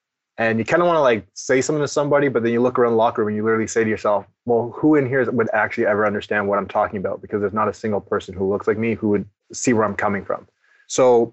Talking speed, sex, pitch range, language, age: 290 wpm, male, 110-120 Hz, English, 20-39